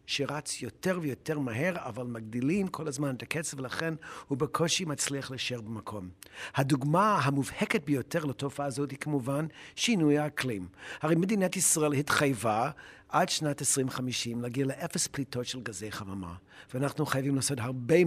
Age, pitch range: 60-79, 125-165 Hz